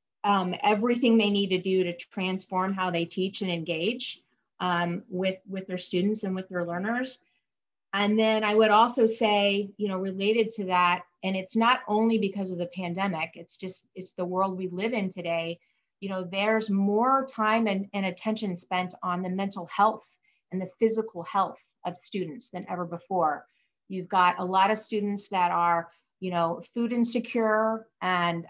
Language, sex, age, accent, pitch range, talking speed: English, female, 30-49, American, 180-215 Hz, 180 wpm